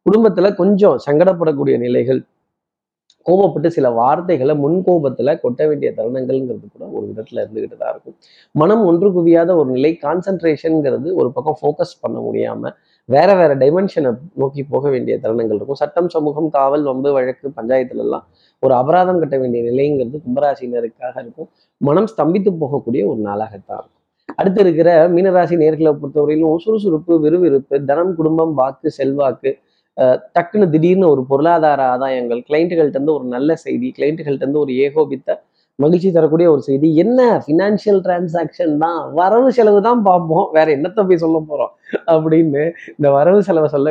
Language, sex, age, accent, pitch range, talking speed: Tamil, male, 30-49, native, 140-180 Hz, 140 wpm